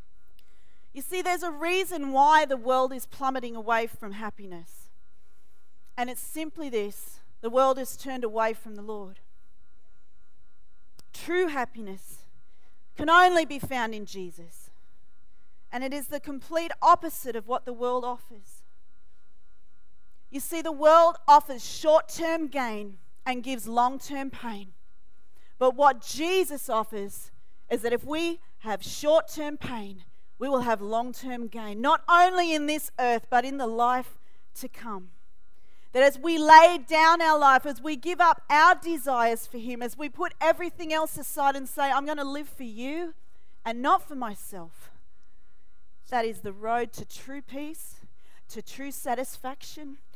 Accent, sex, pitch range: Australian, female, 215-295 Hz